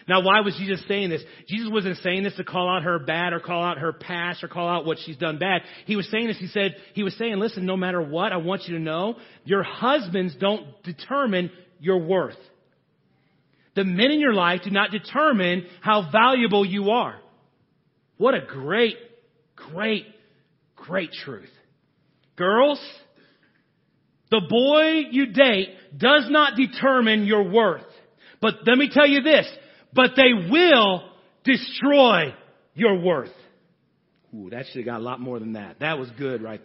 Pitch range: 180-250 Hz